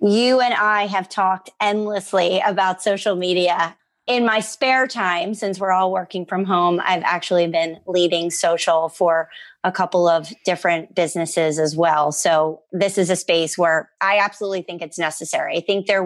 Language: English